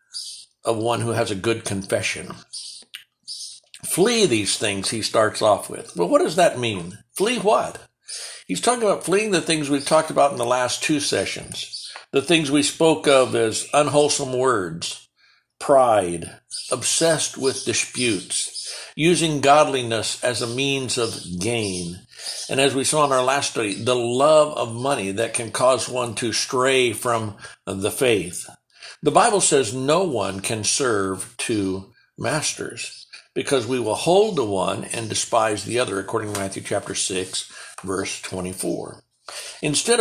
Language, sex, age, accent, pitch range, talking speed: English, male, 60-79, American, 110-150 Hz, 155 wpm